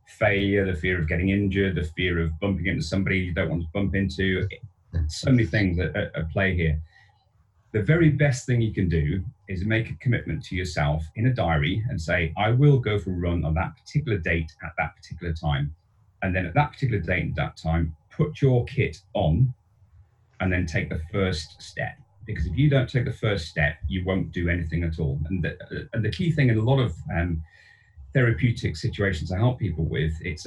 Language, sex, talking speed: English, male, 215 wpm